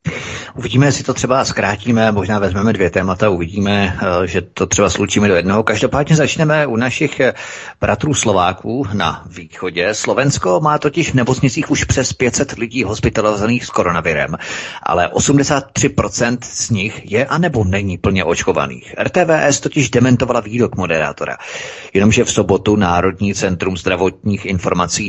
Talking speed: 135 wpm